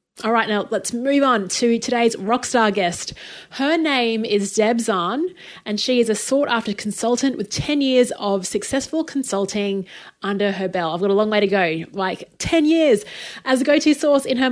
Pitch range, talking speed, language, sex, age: 195-255 Hz, 190 wpm, English, female, 30-49